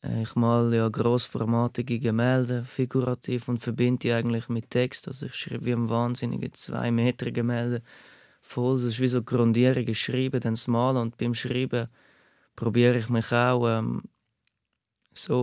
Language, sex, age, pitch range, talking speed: German, male, 20-39, 115-130 Hz, 155 wpm